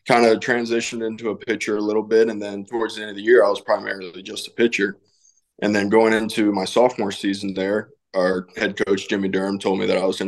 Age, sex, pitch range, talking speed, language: 20-39, male, 100-115 Hz, 245 wpm, English